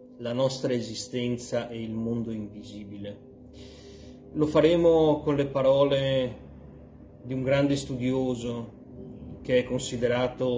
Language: Italian